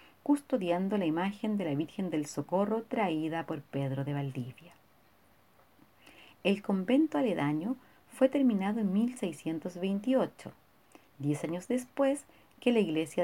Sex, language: female, Spanish